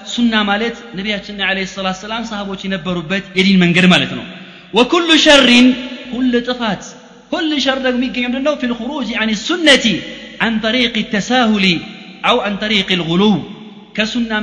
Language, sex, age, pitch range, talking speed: Amharic, male, 30-49, 200-265 Hz, 130 wpm